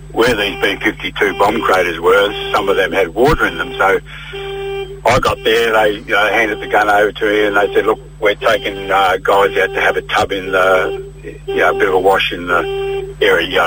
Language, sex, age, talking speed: English, male, 70-89, 230 wpm